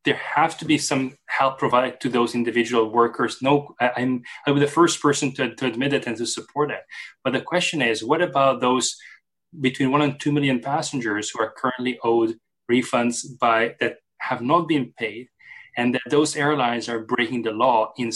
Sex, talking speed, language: male, 190 wpm, English